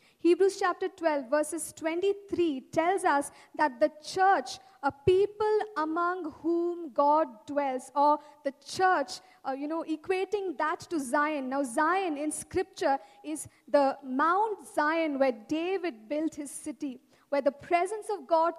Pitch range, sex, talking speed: 280-360 Hz, female, 140 wpm